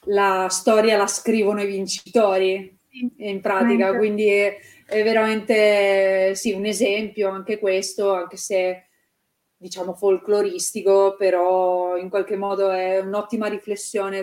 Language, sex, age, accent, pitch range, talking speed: Italian, female, 30-49, native, 190-215 Hz, 115 wpm